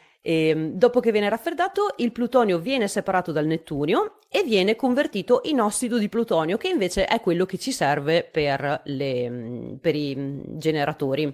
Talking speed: 160 wpm